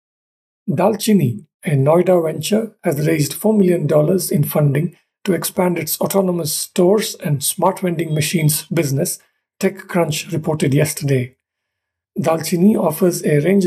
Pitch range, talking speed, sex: 155-190 Hz, 120 wpm, male